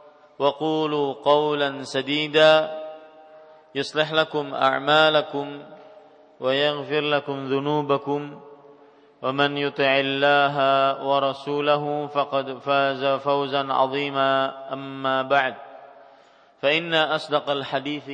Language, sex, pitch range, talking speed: English, male, 135-145 Hz, 75 wpm